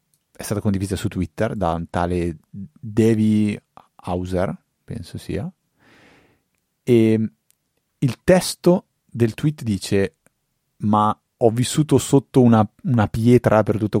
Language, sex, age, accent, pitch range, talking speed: Italian, male, 30-49, native, 95-120 Hz, 115 wpm